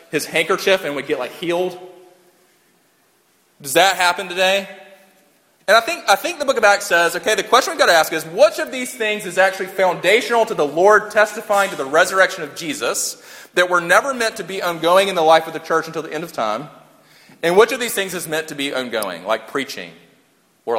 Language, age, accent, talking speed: English, 30-49, American, 220 wpm